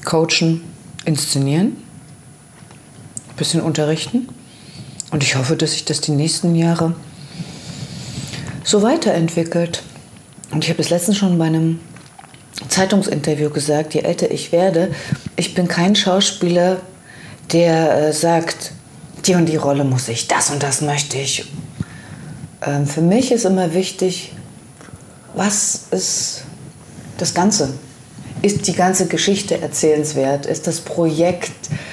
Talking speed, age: 120 wpm, 40-59